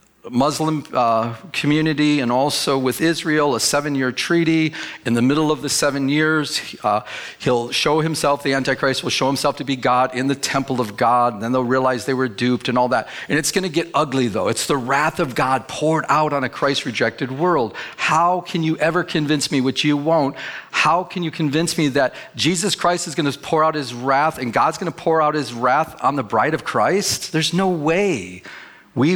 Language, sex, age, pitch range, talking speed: English, male, 40-59, 125-160 Hz, 210 wpm